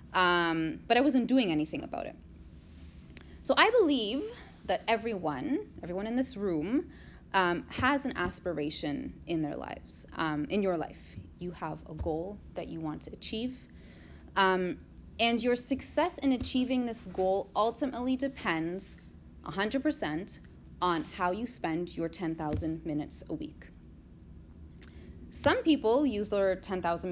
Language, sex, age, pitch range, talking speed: English, female, 20-39, 150-230 Hz, 140 wpm